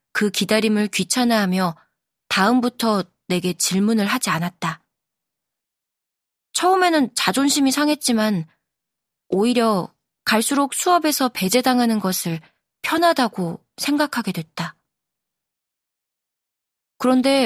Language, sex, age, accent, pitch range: Korean, female, 20-39, native, 185-260 Hz